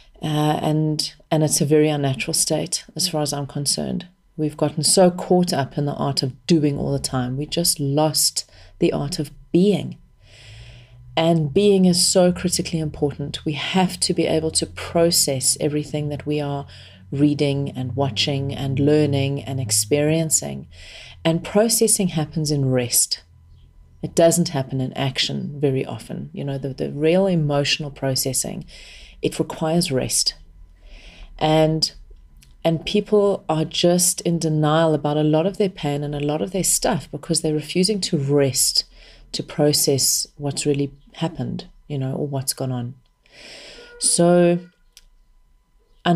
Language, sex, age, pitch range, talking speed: English, female, 40-59, 140-170 Hz, 150 wpm